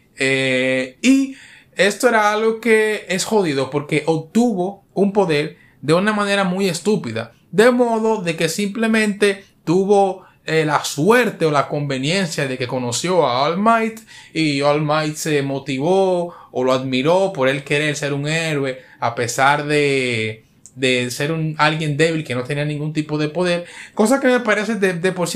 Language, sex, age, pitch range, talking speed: Spanish, male, 30-49, 145-200 Hz, 170 wpm